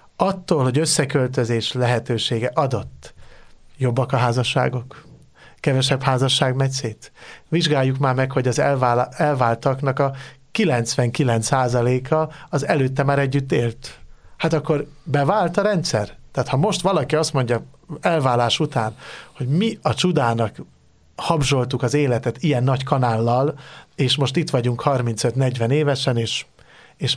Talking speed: 125 wpm